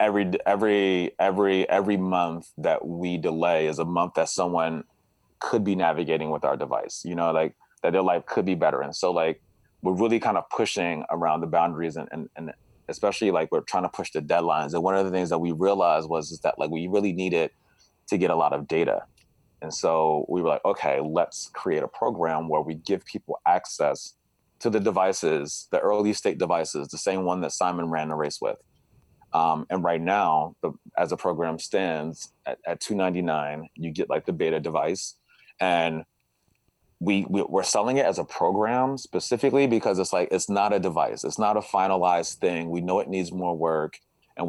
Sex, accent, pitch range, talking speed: male, American, 80-95 Hz, 205 wpm